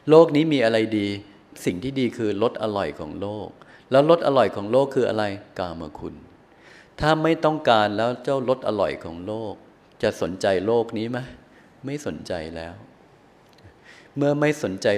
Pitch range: 95-125 Hz